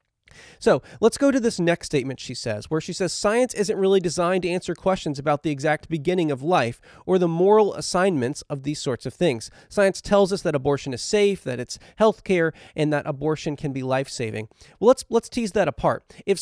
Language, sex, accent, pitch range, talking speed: English, male, American, 155-215 Hz, 210 wpm